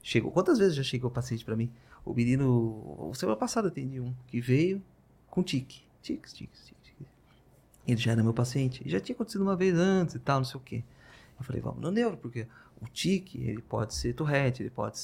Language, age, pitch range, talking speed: Portuguese, 30-49, 120-145 Hz, 220 wpm